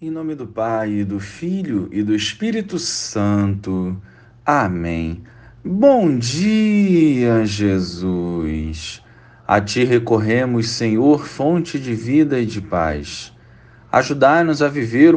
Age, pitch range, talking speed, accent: 40-59, 105-145 Hz, 105 wpm, Brazilian